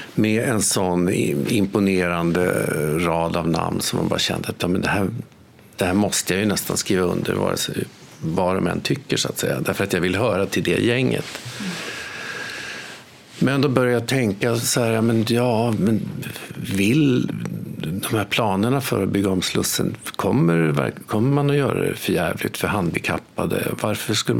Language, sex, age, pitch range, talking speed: Swedish, male, 50-69, 95-120 Hz, 175 wpm